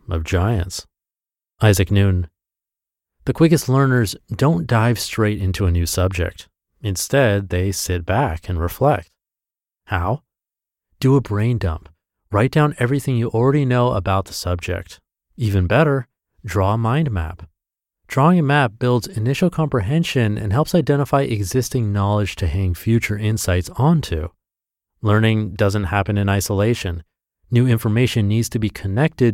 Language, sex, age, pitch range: English, male, 30-49, 90-125 Hz